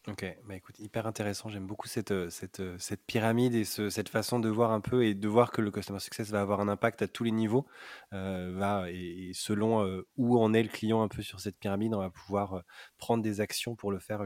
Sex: male